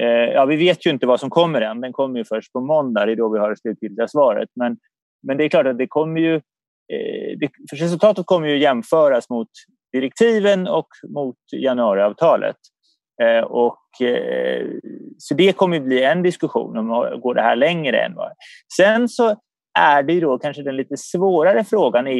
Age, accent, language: 30-49, native, Swedish